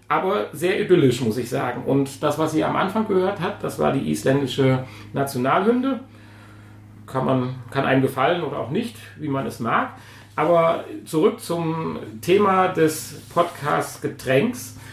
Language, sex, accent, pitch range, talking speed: German, male, German, 115-155 Hz, 145 wpm